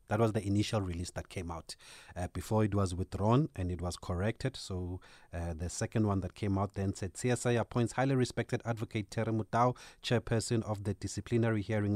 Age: 30-49